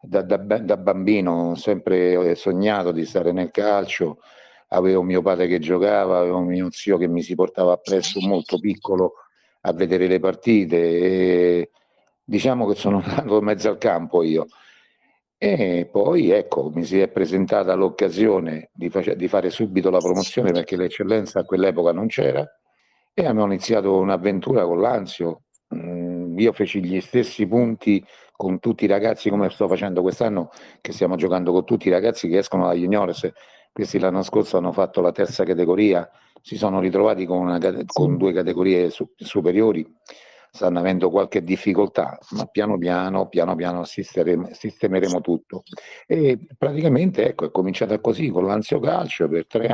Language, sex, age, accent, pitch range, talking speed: Italian, male, 50-69, native, 90-105 Hz, 155 wpm